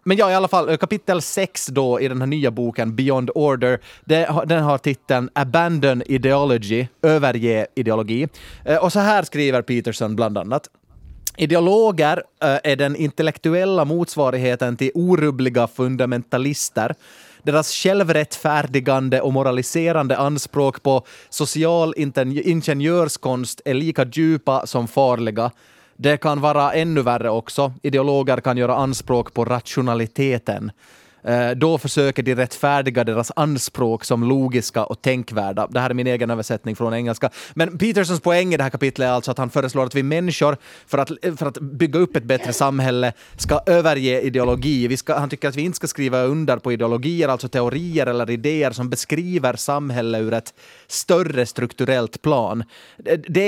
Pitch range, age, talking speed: 125-155 Hz, 30-49, 150 wpm